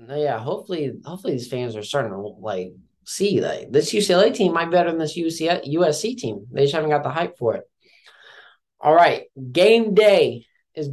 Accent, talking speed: American, 190 wpm